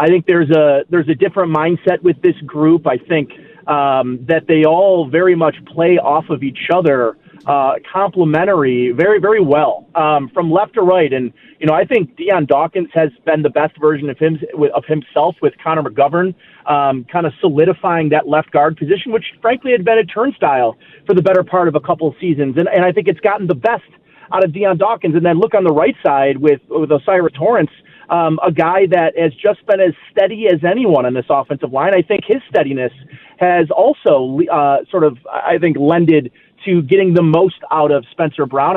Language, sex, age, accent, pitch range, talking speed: English, male, 30-49, American, 150-190 Hz, 205 wpm